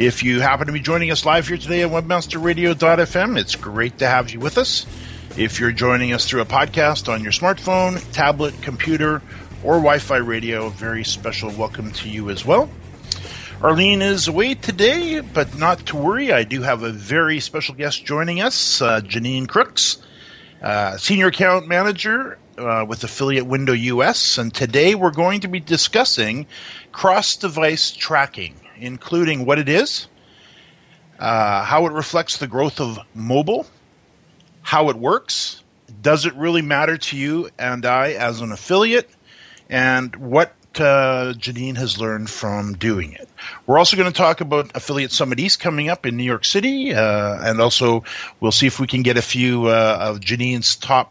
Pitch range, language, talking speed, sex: 115-165 Hz, English, 170 wpm, male